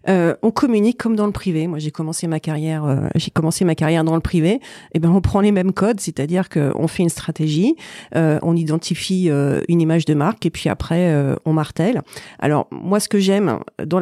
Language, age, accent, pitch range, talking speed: French, 40-59, French, 155-185 Hz, 230 wpm